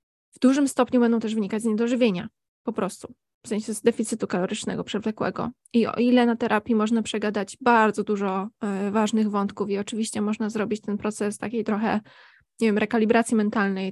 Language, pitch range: Polish, 210-230 Hz